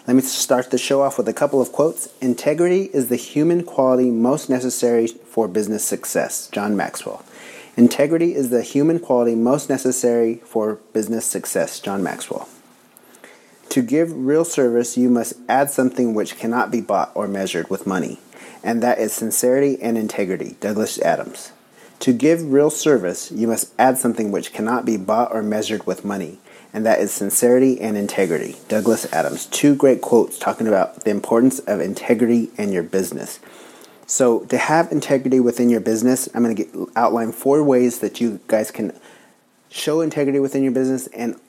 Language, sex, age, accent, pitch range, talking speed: English, male, 30-49, American, 115-135 Hz, 170 wpm